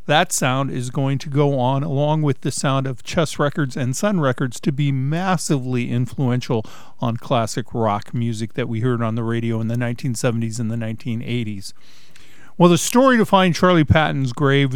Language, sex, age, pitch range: English, male, 50-69, 120-155 Hz